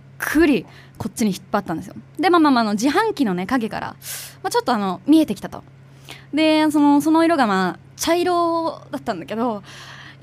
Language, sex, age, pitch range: Japanese, female, 20-39, 195-315 Hz